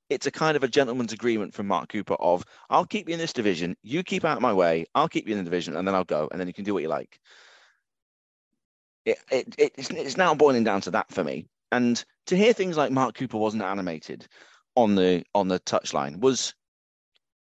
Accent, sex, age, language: British, male, 30-49, English